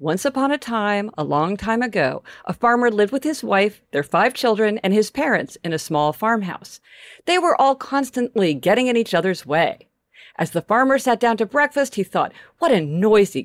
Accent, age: American, 50-69